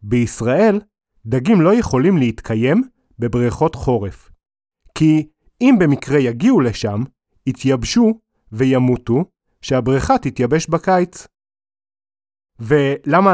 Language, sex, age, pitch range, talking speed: Hebrew, male, 30-49, 115-185 Hz, 80 wpm